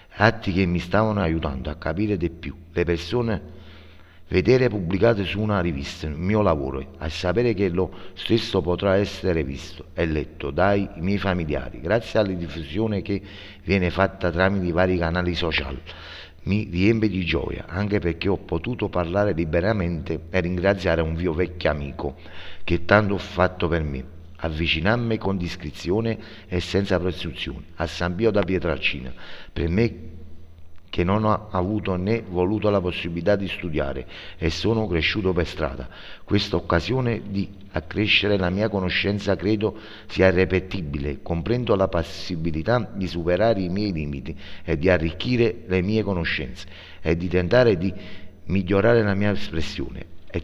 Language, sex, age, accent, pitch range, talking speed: Italian, male, 60-79, native, 85-100 Hz, 150 wpm